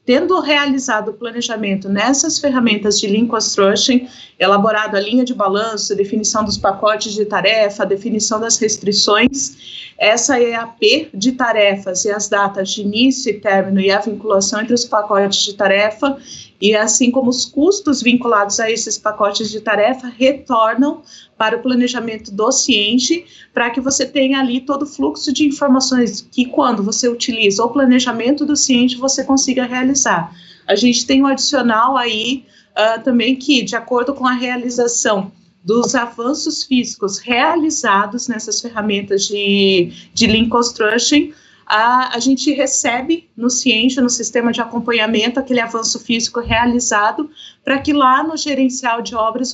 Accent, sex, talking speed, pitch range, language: Brazilian, female, 150 wpm, 215-260 Hz, Portuguese